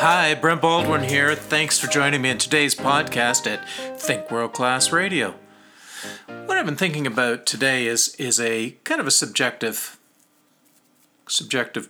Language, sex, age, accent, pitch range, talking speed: English, male, 50-69, American, 135-190 Hz, 150 wpm